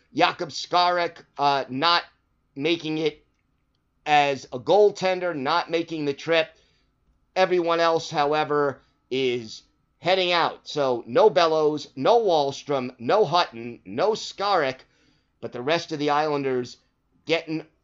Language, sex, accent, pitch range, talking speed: English, male, American, 135-170 Hz, 120 wpm